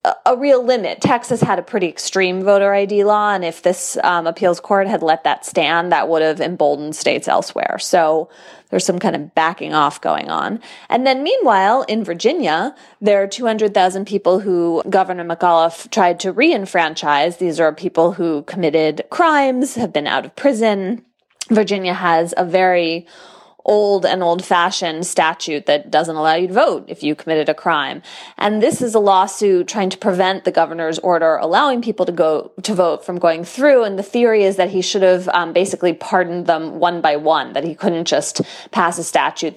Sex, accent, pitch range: female, American, 170-210 Hz